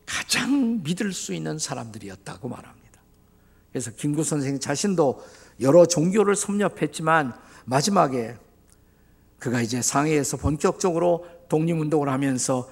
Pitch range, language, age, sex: 130-185 Hz, Korean, 50-69, male